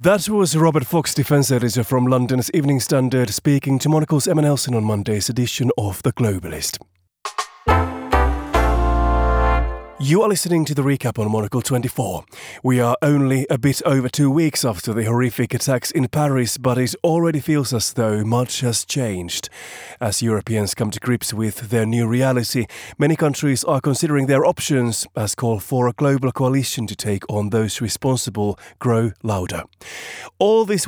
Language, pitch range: English, 115-140 Hz